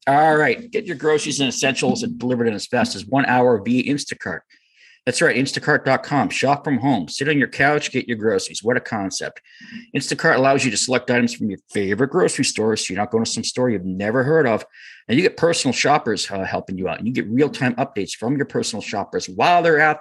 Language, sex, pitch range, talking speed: English, male, 120-175 Hz, 230 wpm